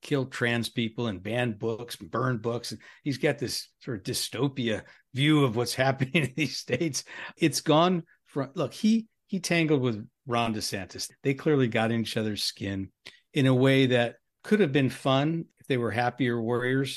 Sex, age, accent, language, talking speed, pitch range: male, 50-69, American, English, 185 wpm, 115-145 Hz